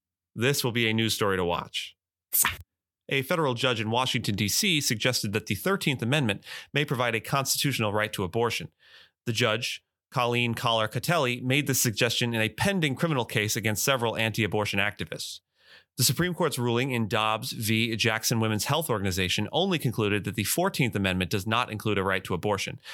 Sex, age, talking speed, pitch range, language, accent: male, 30-49, 175 wpm, 105-130 Hz, English, American